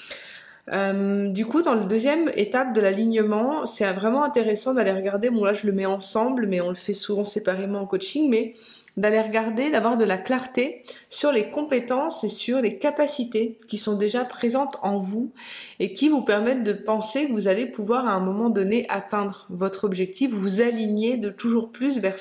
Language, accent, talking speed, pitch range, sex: French, French, 190 wpm, 195-235 Hz, female